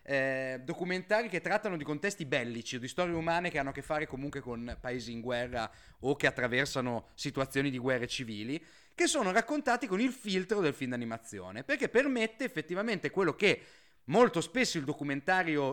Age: 30-49